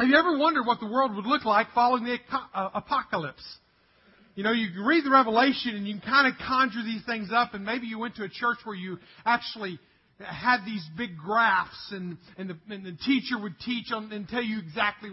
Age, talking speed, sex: 40-59, 205 wpm, male